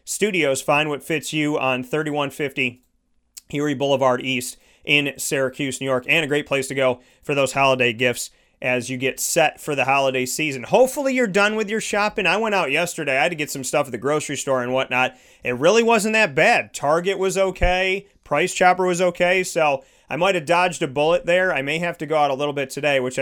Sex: male